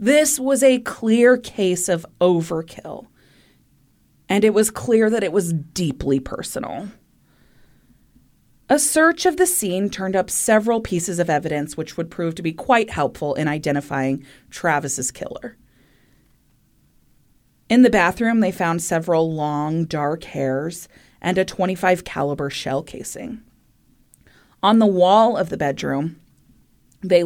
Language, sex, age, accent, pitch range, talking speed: English, female, 30-49, American, 160-215 Hz, 130 wpm